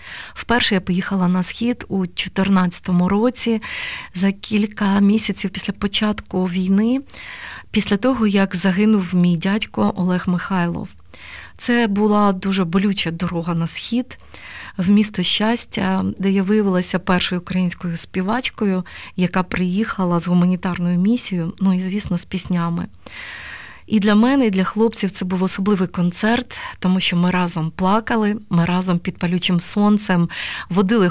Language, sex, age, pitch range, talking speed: Ukrainian, female, 30-49, 180-210 Hz, 135 wpm